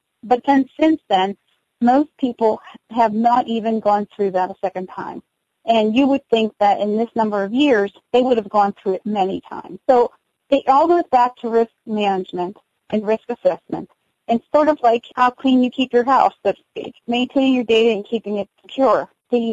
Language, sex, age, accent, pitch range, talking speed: English, female, 40-59, American, 210-250 Hz, 200 wpm